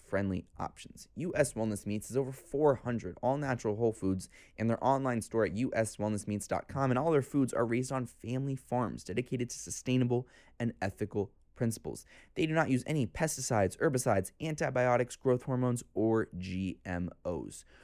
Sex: male